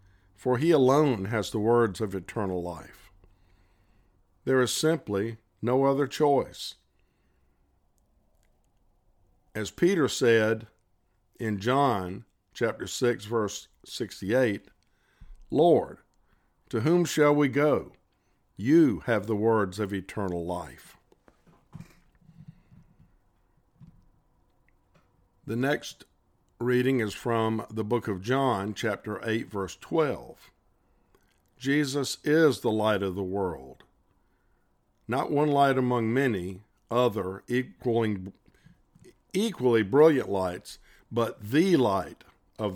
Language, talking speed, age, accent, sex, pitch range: English, 100 wpm, 50-69, American, male, 95-130 Hz